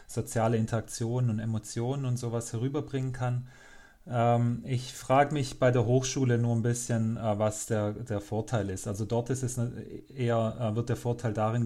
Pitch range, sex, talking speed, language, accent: 105-115 Hz, male, 180 wpm, German, German